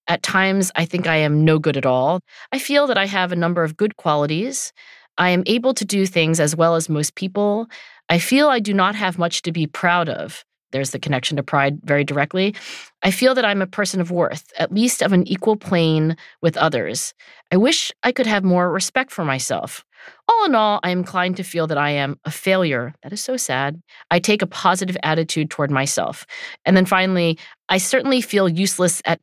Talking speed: 220 wpm